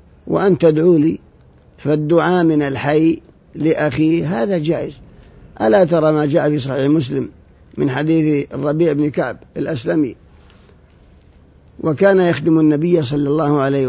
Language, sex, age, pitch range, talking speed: Arabic, male, 50-69, 145-175 Hz, 120 wpm